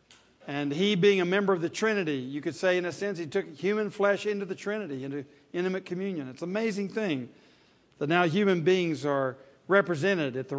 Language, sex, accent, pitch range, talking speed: English, male, American, 150-195 Hz, 205 wpm